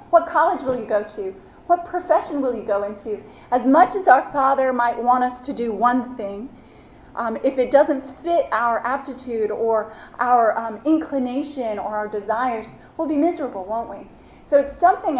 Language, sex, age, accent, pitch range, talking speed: English, female, 30-49, American, 230-280 Hz, 180 wpm